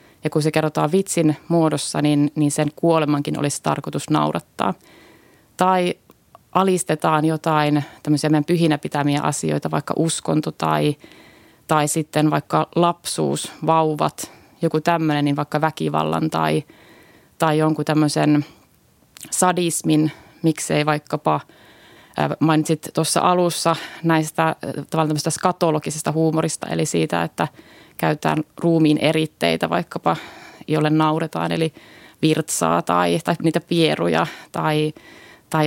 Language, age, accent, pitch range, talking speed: Finnish, 30-49, native, 150-165 Hz, 105 wpm